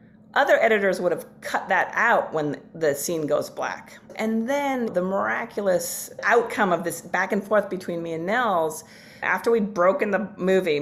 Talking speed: 170 wpm